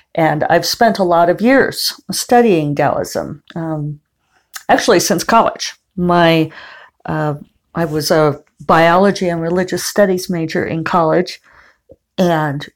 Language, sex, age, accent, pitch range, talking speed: English, female, 50-69, American, 155-175 Hz, 120 wpm